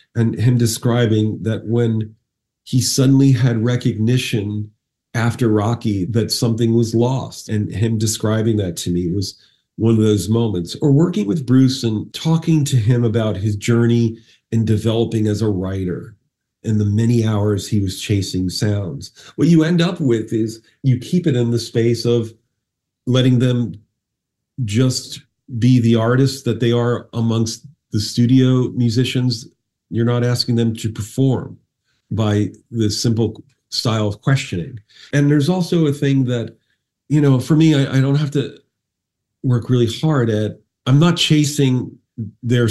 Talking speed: 155 wpm